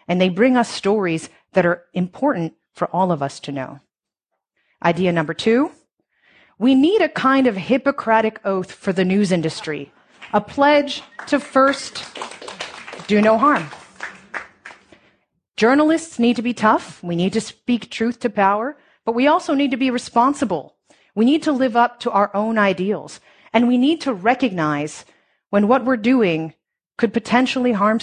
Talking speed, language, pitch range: 160 wpm, English, 180-245 Hz